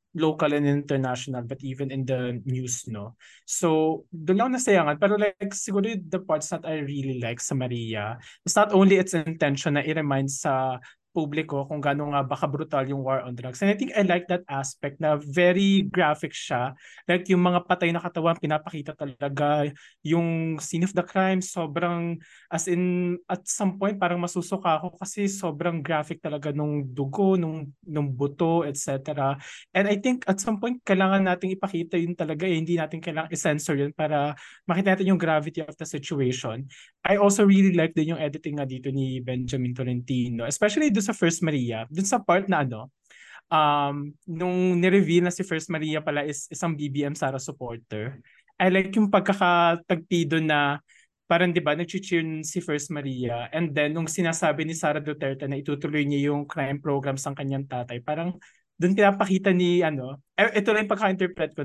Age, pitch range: 20-39, 145-180 Hz